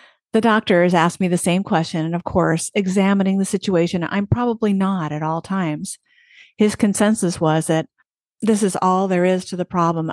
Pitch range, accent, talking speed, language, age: 170-205 Hz, American, 185 wpm, English, 50-69